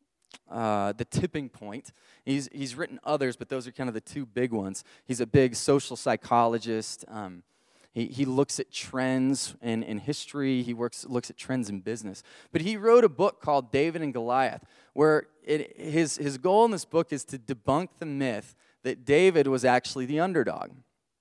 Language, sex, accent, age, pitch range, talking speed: English, male, American, 20-39, 130-170 Hz, 185 wpm